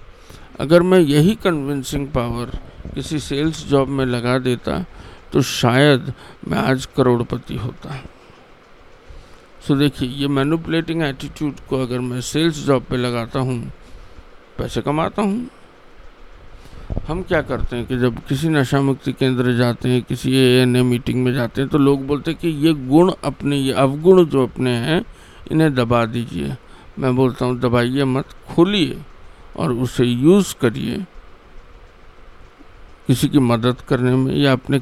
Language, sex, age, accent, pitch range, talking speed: English, male, 50-69, Indian, 125-145 Hz, 130 wpm